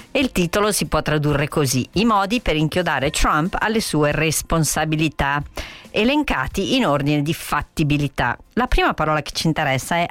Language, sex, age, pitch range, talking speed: Italian, female, 50-69, 145-195 Hz, 155 wpm